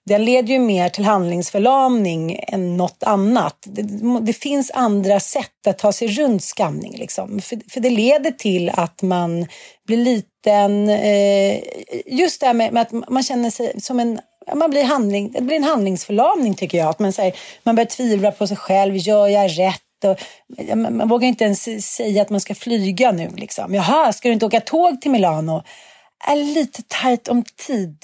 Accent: native